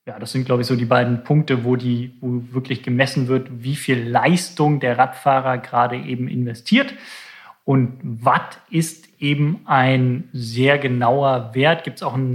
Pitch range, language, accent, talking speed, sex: 120-135 Hz, German, German, 170 wpm, male